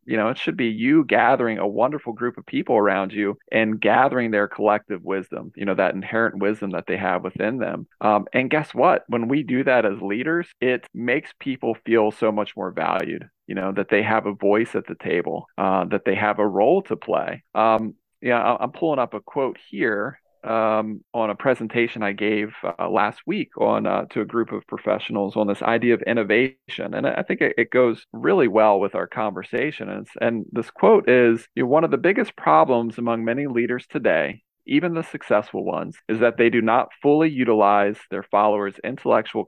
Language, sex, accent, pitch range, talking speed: English, male, American, 105-125 Hz, 200 wpm